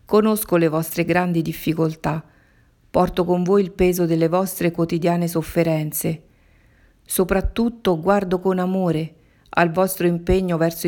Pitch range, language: 160-185 Hz, Italian